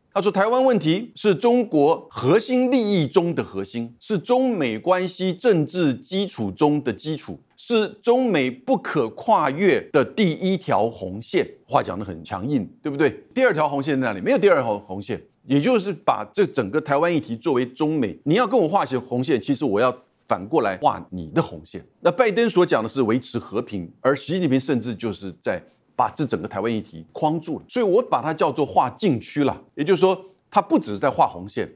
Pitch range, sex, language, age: 115-190 Hz, male, Chinese, 50-69